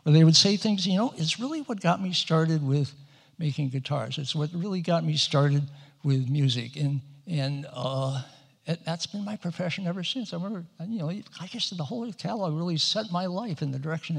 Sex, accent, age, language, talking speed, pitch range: male, American, 60-79, English, 210 wpm, 135-175 Hz